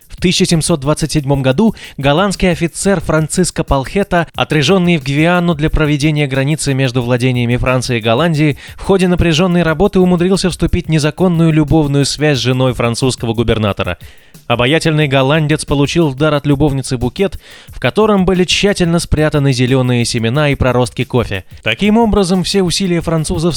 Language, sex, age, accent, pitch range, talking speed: Russian, male, 20-39, native, 125-170 Hz, 135 wpm